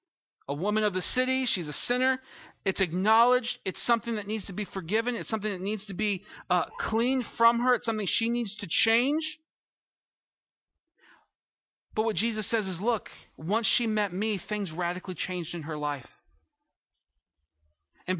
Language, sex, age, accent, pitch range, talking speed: English, male, 40-59, American, 155-225 Hz, 165 wpm